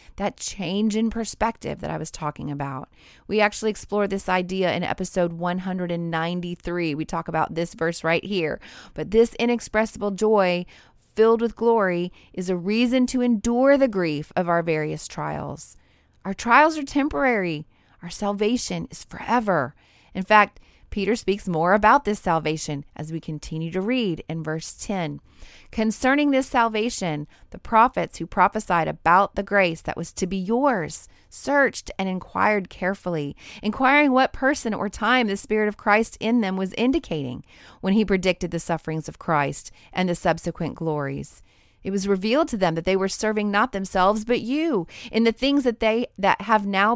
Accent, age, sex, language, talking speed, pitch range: American, 30-49, female, English, 165 wpm, 165-220 Hz